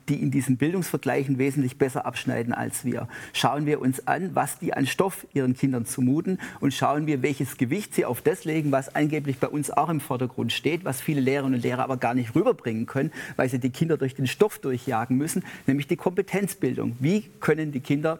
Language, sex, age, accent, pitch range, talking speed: German, male, 40-59, German, 130-165 Hz, 210 wpm